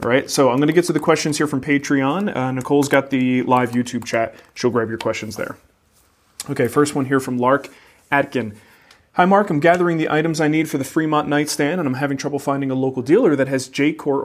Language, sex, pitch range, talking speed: English, male, 125-150 Hz, 230 wpm